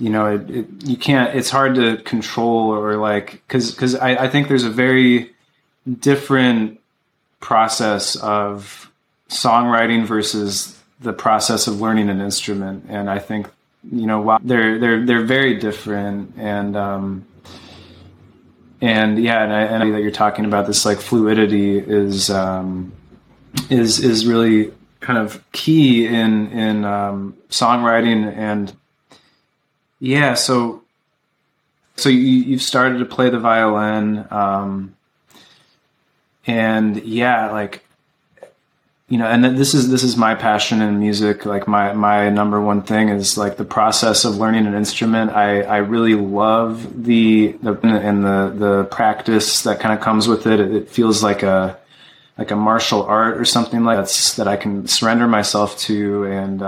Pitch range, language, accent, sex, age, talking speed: 105-120 Hz, English, American, male, 20-39, 150 wpm